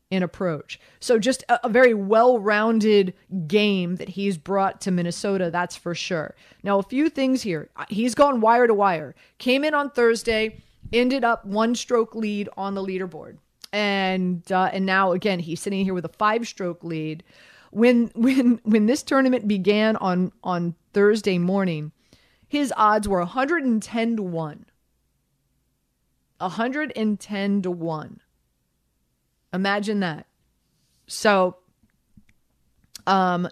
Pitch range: 185-230 Hz